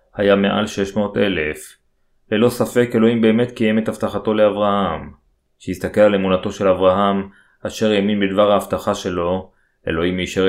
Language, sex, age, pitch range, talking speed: Hebrew, male, 30-49, 95-110 Hz, 135 wpm